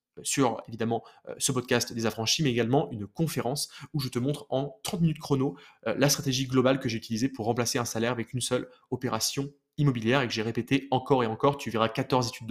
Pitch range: 120-145 Hz